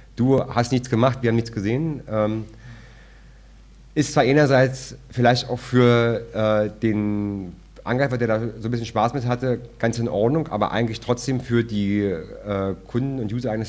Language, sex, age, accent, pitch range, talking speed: German, male, 40-59, German, 105-125 Hz, 160 wpm